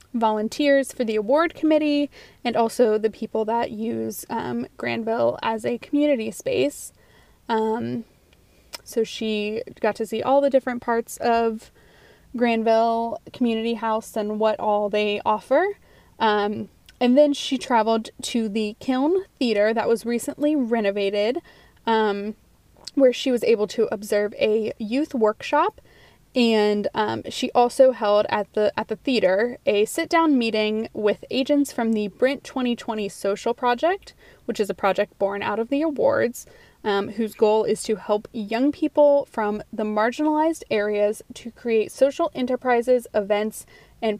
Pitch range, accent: 210-255 Hz, American